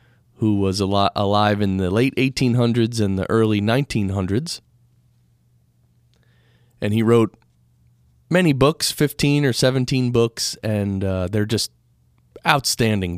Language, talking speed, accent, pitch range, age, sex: English, 115 wpm, American, 90-125 Hz, 30-49, male